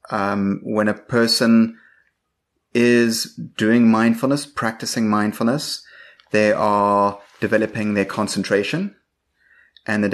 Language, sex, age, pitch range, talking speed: English, male, 30-49, 95-110 Hz, 95 wpm